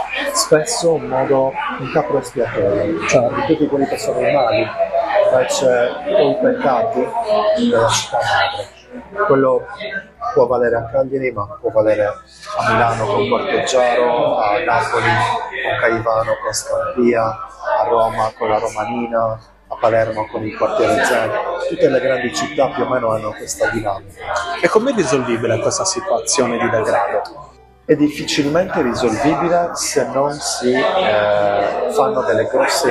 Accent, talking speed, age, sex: native, 140 wpm, 30-49, male